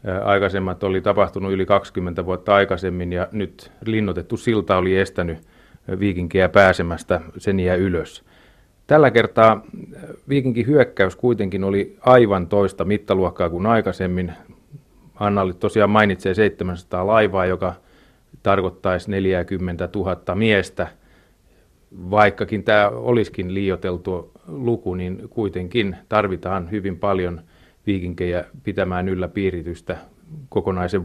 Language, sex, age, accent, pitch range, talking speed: Finnish, male, 30-49, native, 90-110 Hz, 100 wpm